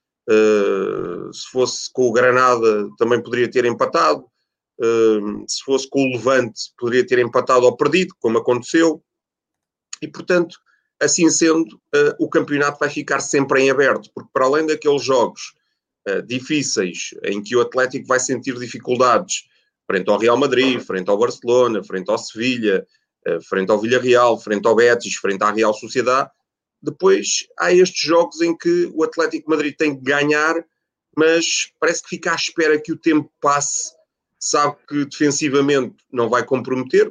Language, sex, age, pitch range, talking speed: Portuguese, male, 30-49, 120-165 Hz, 160 wpm